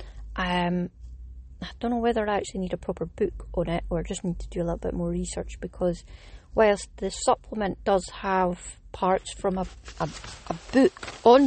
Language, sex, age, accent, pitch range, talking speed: English, female, 30-49, British, 175-210 Hz, 190 wpm